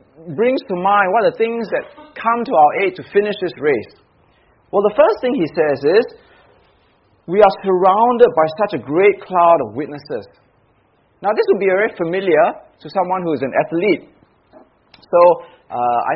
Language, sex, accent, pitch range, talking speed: English, male, Malaysian, 150-220 Hz, 180 wpm